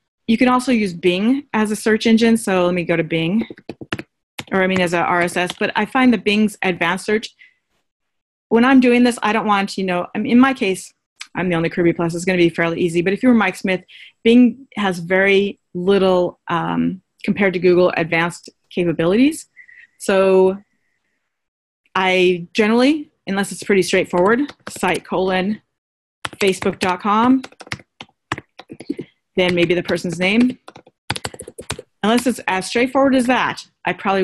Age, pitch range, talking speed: 30-49, 180-235 Hz, 160 wpm